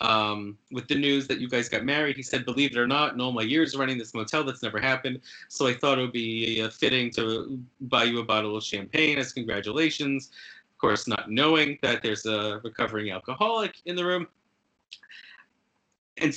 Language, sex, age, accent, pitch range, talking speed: English, male, 30-49, American, 110-140 Hz, 205 wpm